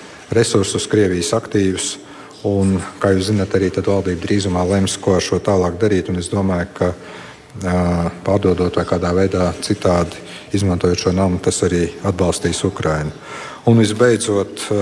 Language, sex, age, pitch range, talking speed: Russian, male, 50-69, 90-110 Hz, 140 wpm